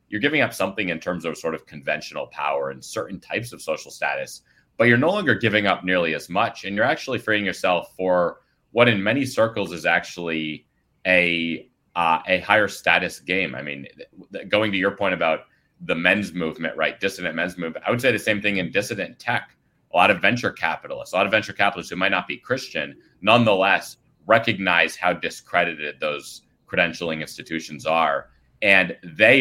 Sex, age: male, 30-49